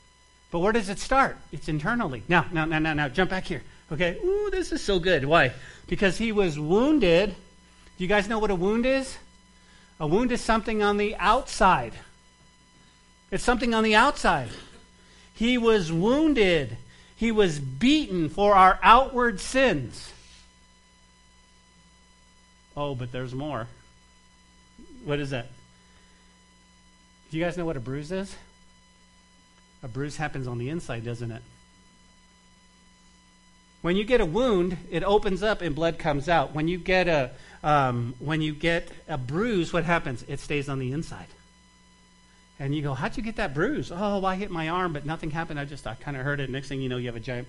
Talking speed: 175 wpm